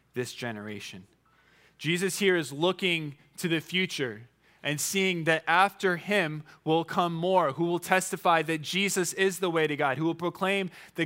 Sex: male